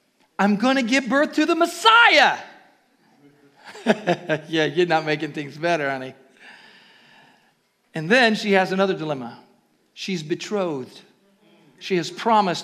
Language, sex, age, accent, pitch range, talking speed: English, male, 50-69, American, 185-265 Hz, 125 wpm